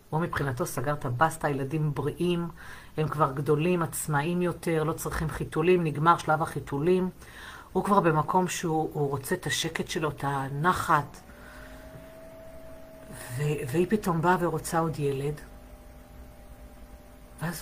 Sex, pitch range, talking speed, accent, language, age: female, 140-175 Hz, 125 wpm, native, Hebrew, 50-69